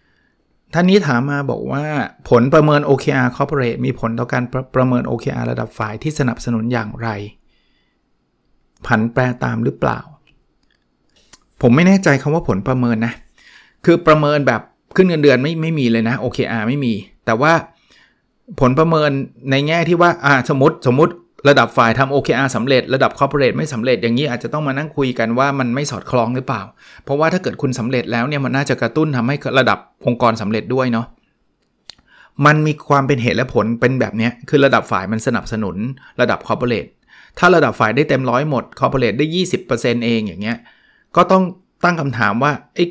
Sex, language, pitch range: male, Thai, 115-145 Hz